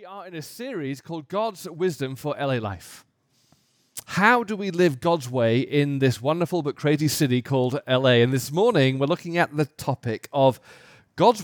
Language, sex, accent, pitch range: English, male, British, 130-180 Hz